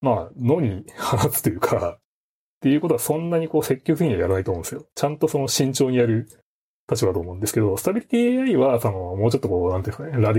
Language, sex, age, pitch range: Japanese, male, 30-49, 100-155 Hz